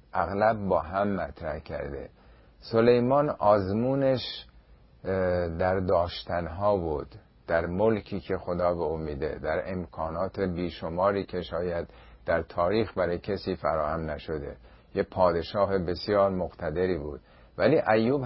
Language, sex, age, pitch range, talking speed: Persian, male, 50-69, 85-105 Hz, 110 wpm